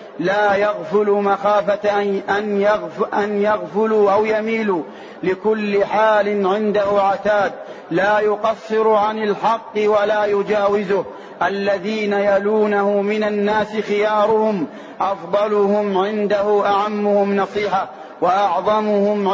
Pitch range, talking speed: 205-215 Hz, 85 wpm